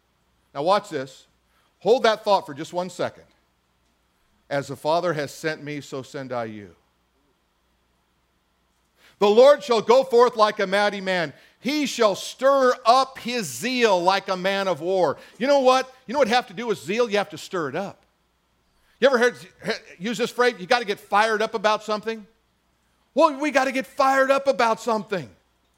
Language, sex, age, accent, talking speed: English, male, 50-69, American, 185 wpm